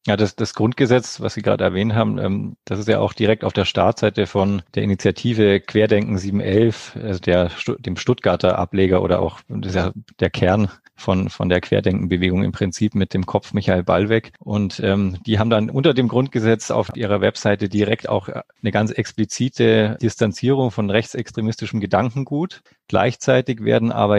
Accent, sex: German, male